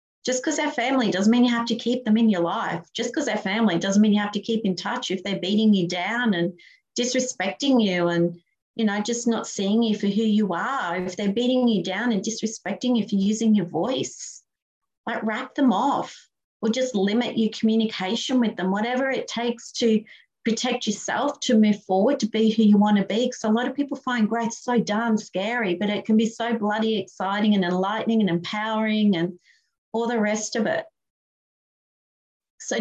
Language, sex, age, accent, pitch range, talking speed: English, female, 40-59, Australian, 200-240 Hz, 205 wpm